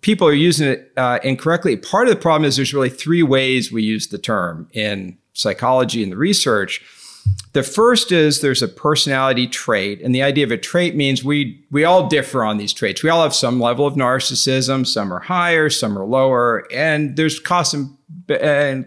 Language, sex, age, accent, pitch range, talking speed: English, male, 50-69, American, 115-150 Hz, 200 wpm